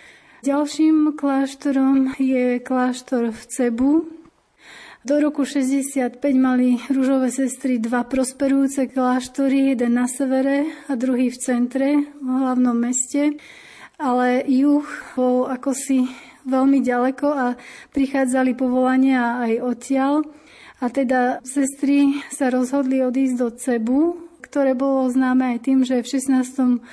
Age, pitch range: 30-49, 245-275 Hz